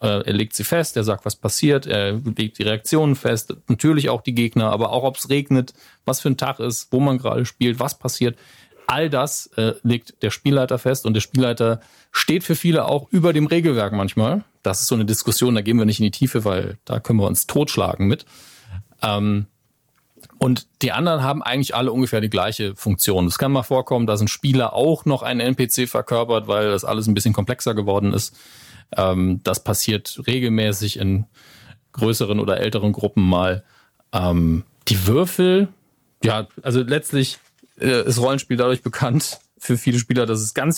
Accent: German